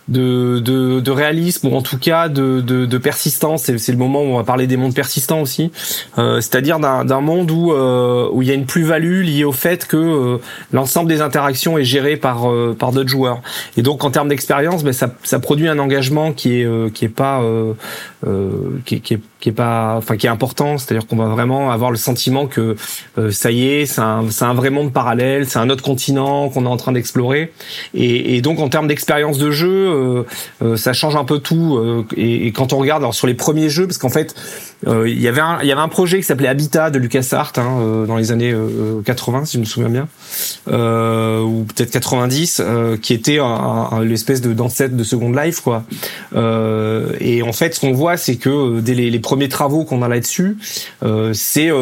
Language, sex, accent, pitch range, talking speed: French, male, French, 120-150 Hz, 225 wpm